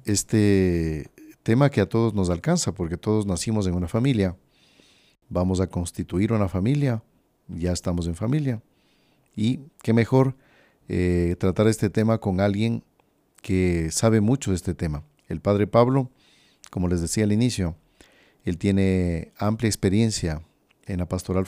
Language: Spanish